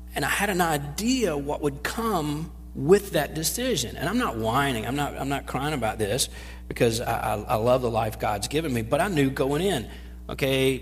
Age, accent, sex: 40-59, American, male